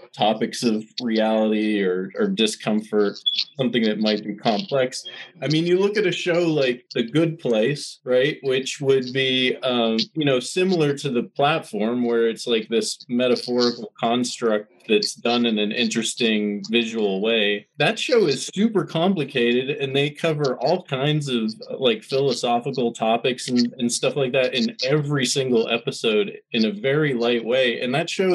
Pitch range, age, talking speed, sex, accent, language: 115-140 Hz, 20-39, 165 wpm, male, American, English